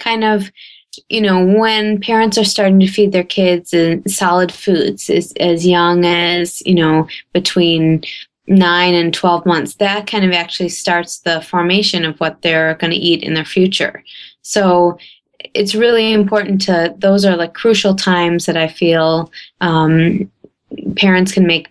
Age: 20-39